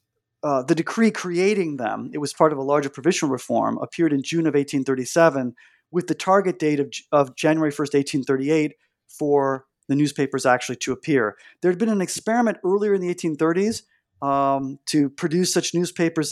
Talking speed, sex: 175 wpm, male